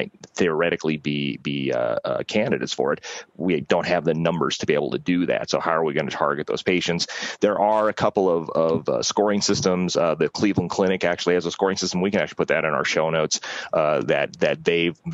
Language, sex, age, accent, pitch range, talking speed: Italian, male, 30-49, American, 80-90 Hz, 240 wpm